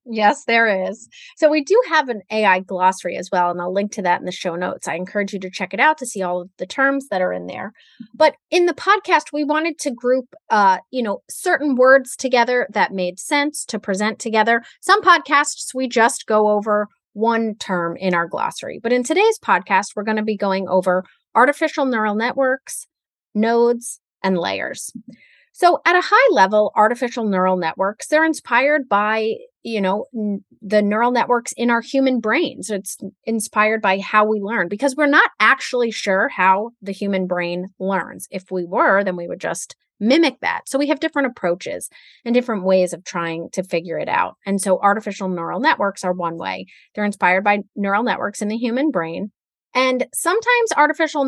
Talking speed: 195 wpm